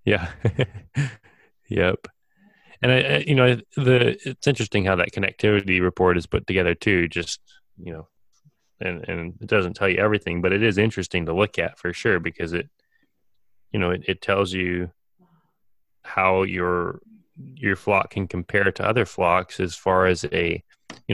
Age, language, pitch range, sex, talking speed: 20-39, English, 90-110 Hz, male, 165 wpm